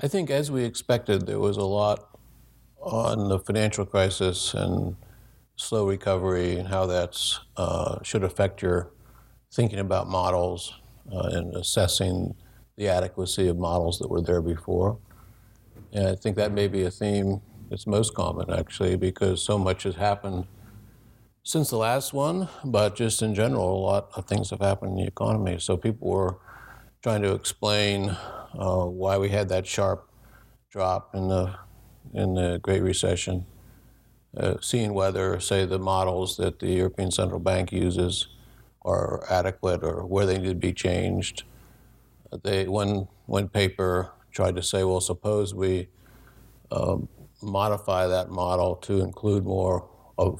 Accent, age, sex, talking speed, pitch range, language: American, 60-79, male, 150 wpm, 90-105 Hz, English